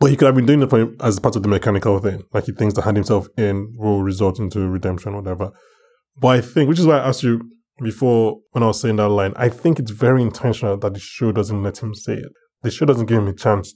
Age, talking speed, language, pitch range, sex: 20-39, 280 wpm, English, 105-130 Hz, male